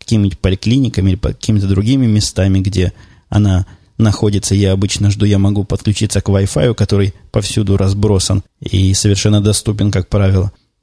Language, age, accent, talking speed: Russian, 20-39, native, 140 wpm